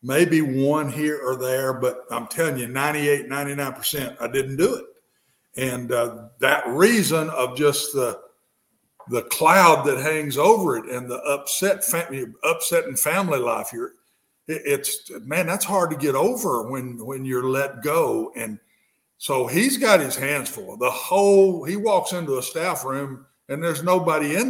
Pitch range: 135-180 Hz